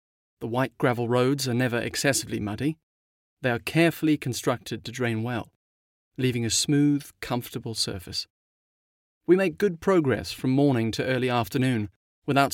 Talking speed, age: 145 wpm, 30-49